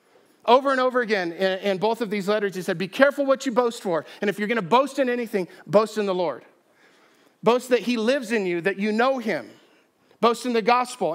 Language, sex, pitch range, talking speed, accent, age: English, male, 180-230 Hz, 225 wpm, American, 50-69